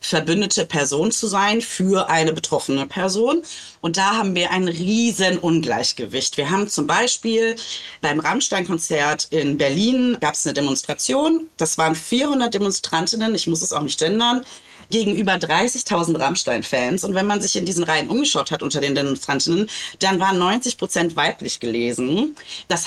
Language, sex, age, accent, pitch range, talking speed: German, female, 30-49, German, 155-195 Hz, 150 wpm